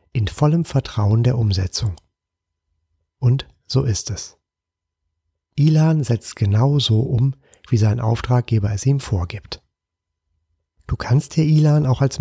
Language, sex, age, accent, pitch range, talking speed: German, male, 40-59, German, 95-135 Hz, 130 wpm